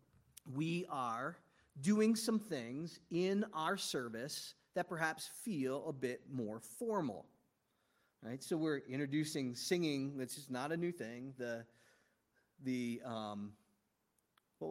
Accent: American